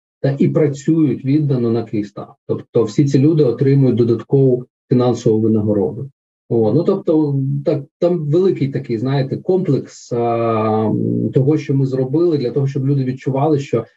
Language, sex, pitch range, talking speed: Ukrainian, male, 130-155 Hz, 145 wpm